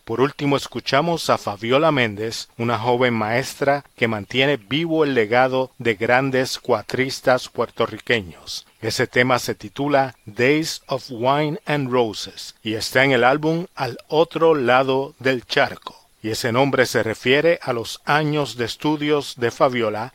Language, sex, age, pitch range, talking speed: Spanish, male, 40-59, 100-130 Hz, 145 wpm